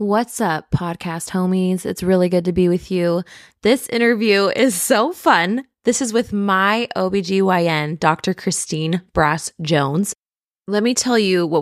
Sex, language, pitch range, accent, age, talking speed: female, English, 160-205 Hz, American, 20-39, 155 wpm